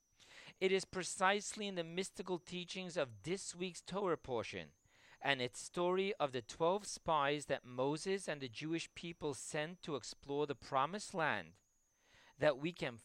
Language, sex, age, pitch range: English, male, 40-59, 130-185 Hz